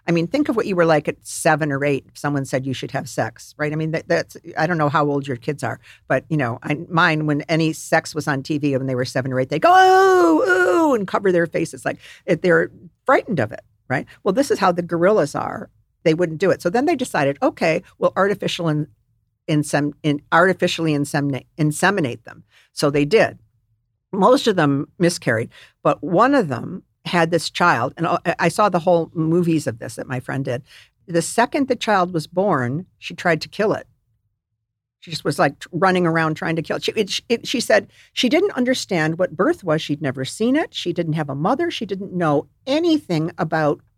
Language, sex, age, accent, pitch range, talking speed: English, female, 50-69, American, 145-195 Hz, 215 wpm